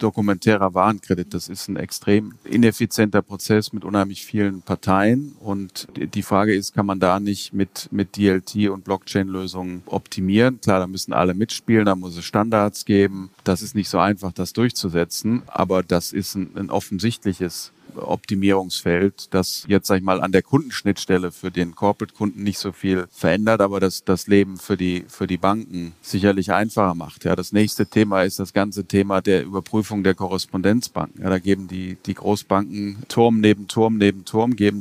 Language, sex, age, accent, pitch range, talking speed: German, male, 40-59, German, 95-105 Hz, 170 wpm